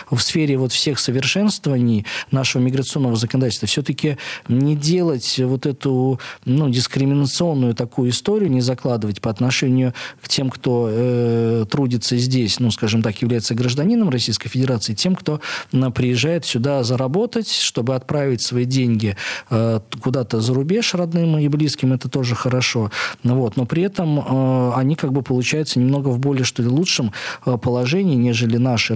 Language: Russian